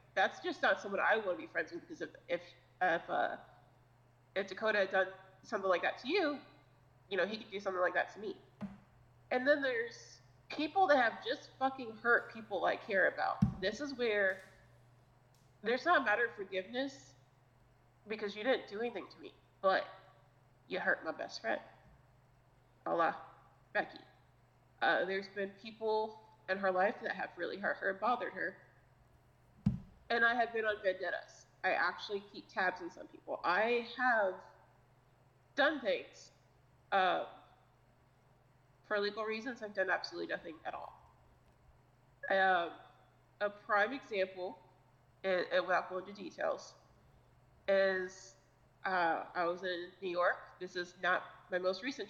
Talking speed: 160 wpm